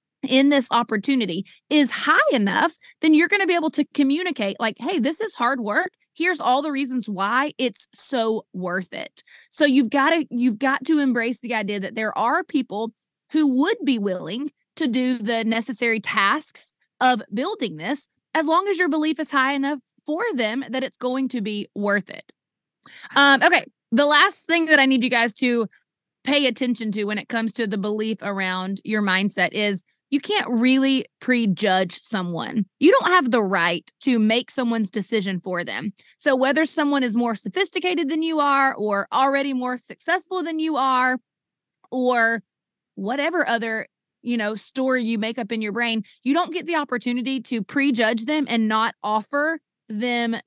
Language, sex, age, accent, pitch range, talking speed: English, female, 20-39, American, 220-290 Hz, 180 wpm